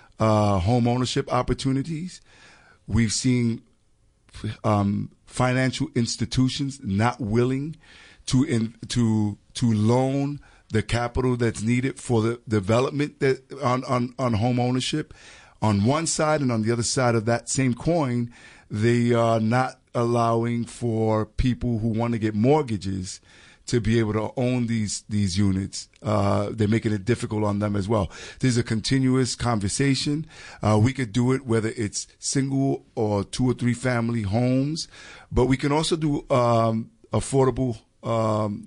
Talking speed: 145 wpm